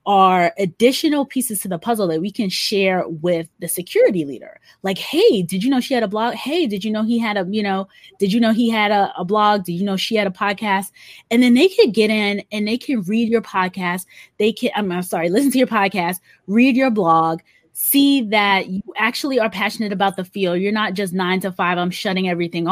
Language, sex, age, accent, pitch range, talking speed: English, female, 20-39, American, 180-220 Hz, 235 wpm